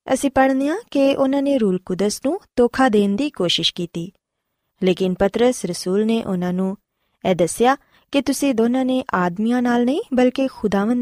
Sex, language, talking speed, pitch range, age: female, Punjabi, 165 wpm, 190-265 Hz, 20-39